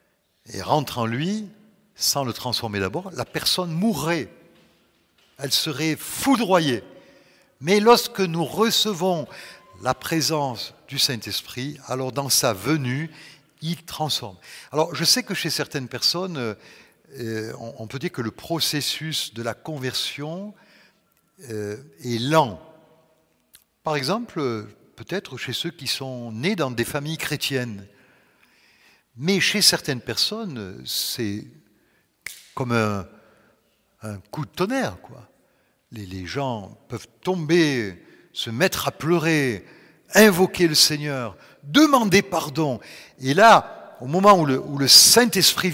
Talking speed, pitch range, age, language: 120 wpm, 125-190 Hz, 60-79, French